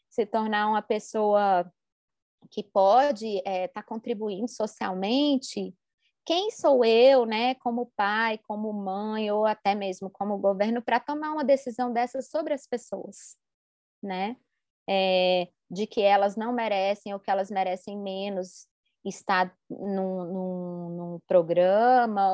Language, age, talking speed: Portuguese, 20-39, 130 wpm